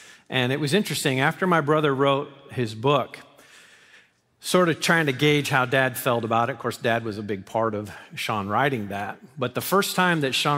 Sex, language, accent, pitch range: male, English, American, 110-140 Hz